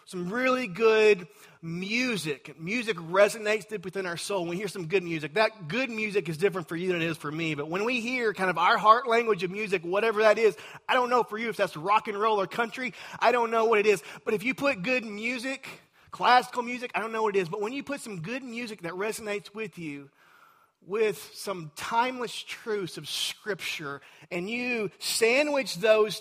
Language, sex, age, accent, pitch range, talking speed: English, male, 30-49, American, 145-215 Hz, 215 wpm